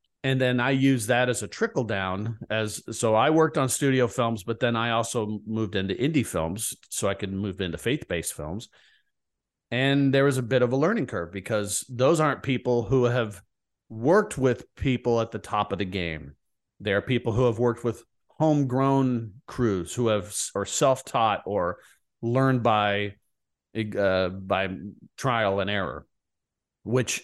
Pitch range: 105-130 Hz